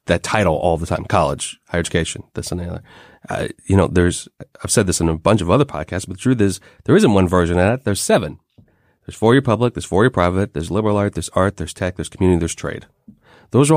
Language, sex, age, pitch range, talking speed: English, male, 30-49, 85-120 Hz, 255 wpm